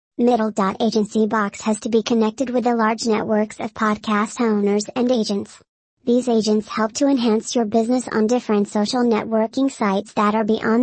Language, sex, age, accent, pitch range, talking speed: English, male, 40-59, American, 215-245 Hz, 160 wpm